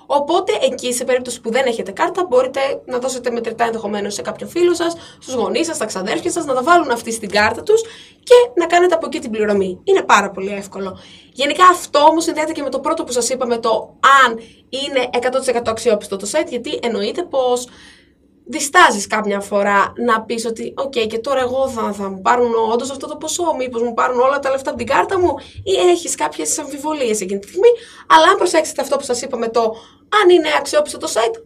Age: 20-39